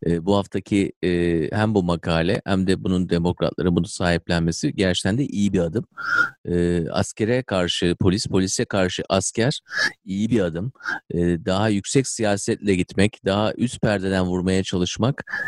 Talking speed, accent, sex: 145 wpm, native, male